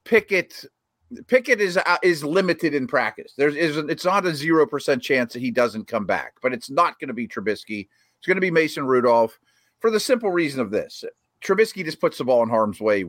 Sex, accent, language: male, American, English